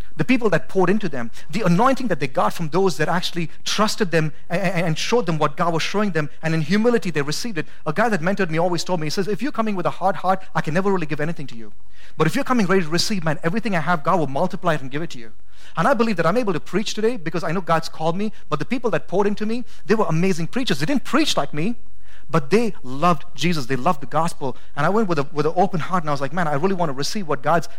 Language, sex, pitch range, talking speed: English, male, 135-185 Hz, 290 wpm